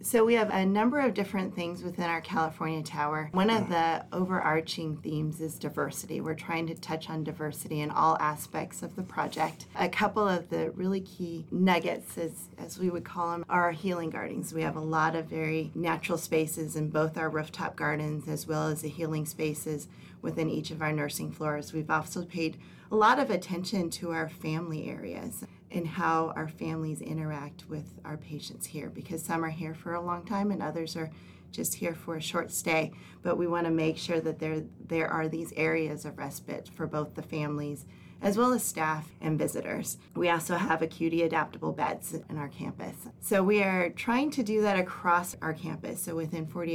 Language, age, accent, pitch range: English, 30-49, American, 155-175 Hz